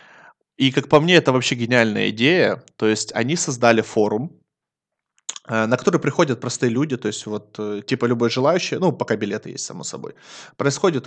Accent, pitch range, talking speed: native, 120-155 Hz, 170 wpm